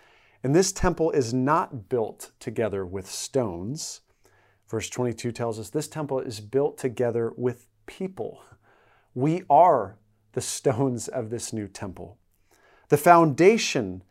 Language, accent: English, American